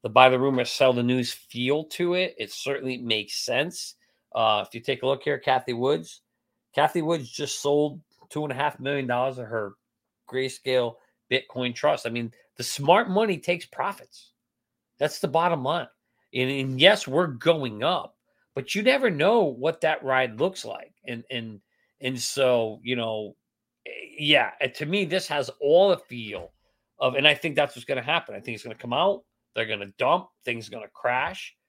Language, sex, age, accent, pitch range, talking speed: English, male, 40-59, American, 125-165 Hz, 180 wpm